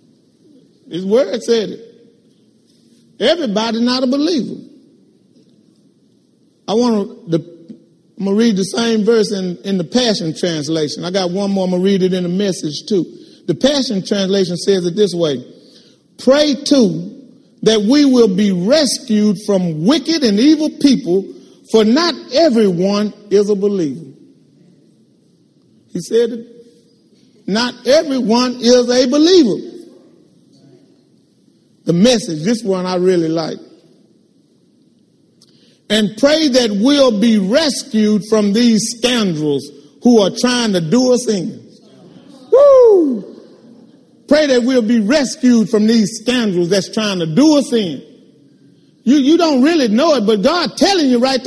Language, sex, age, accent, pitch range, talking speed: English, male, 40-59, American, 205-280 Hz, 135 wpm